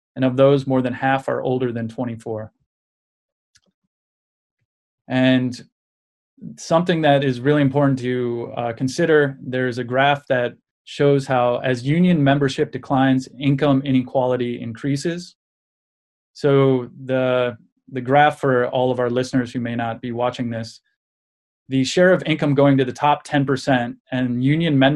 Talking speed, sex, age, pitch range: 140 wpm, male, 20-39, 120-140 Hz